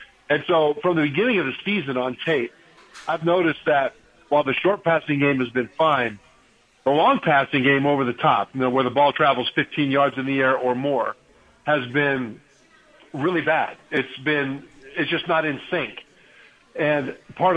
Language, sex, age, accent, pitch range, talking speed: English, male, 50-69, American, 130-160 Hz, 185 wpm